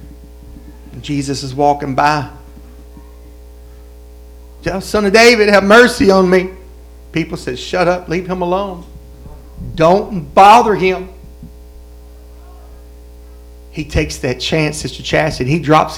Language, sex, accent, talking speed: English, male, American, 110 wpm